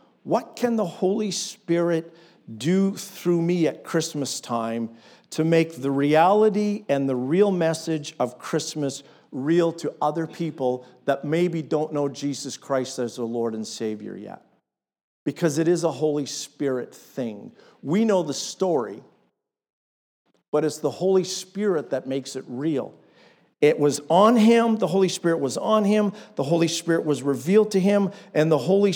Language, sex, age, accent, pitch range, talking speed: English, male, 50-69, American, 150-200 Hz, 160 wpm